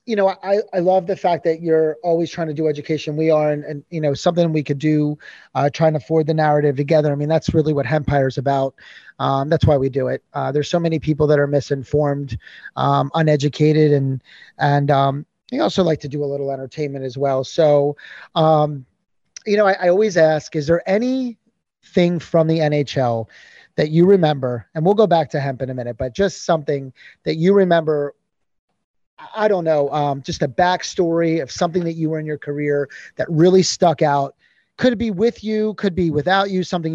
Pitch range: 150-185 Hz